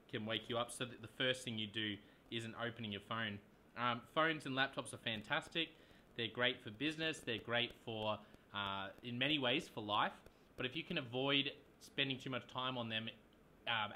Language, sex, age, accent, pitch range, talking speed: English, male, 20-39, Australian, 110-135 Hz, 200 wpm